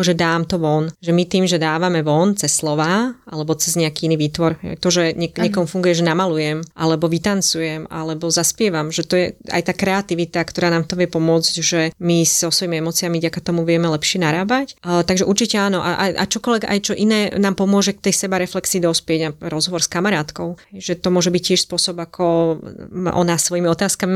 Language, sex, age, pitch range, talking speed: Slovak, female, 20-39, 170-195 Hz, 195 wpm